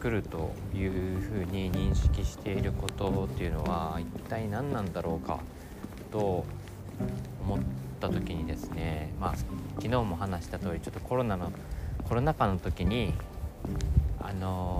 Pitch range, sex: 80-105 Hz, male